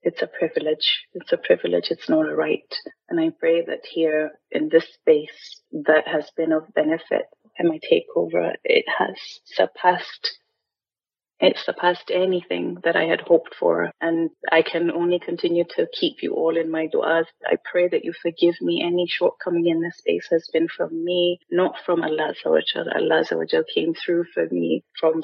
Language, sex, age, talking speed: English, female, 30-49, 175 wpm